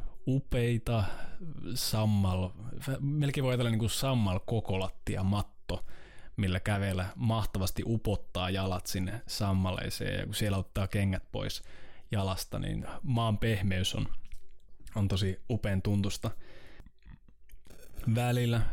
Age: 20-39